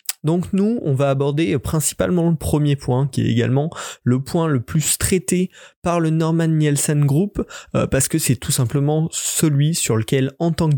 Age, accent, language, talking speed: 20-39, French, French, 190 wpm